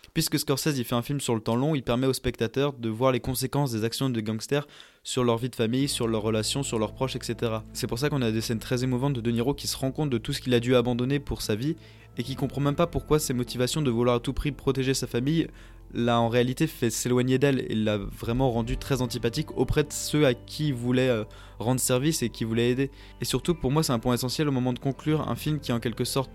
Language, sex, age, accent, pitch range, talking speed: French, male, 20-39, French, 115-135 Hz, 270 wpm